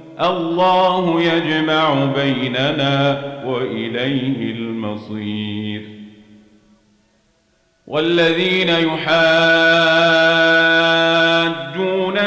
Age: 40-59